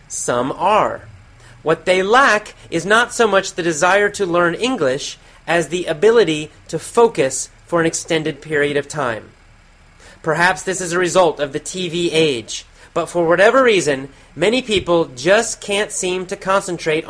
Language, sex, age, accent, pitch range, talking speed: English, male, 30-49, American, 145-190 Hz, 160 wpm